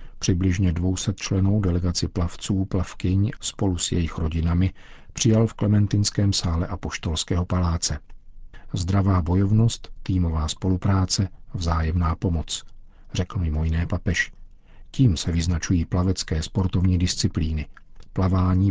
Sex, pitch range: male, 85-105 Hz